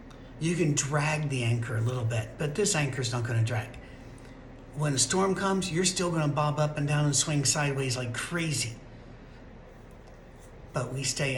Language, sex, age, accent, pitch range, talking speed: English, male, 60-79, American, 125-160 Hz, 175 wpm